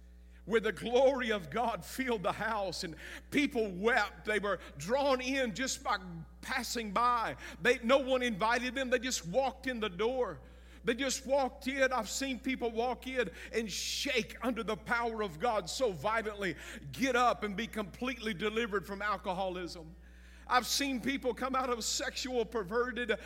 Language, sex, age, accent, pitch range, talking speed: English, male, 50-69, American, 205-265 Hz, 165 wpm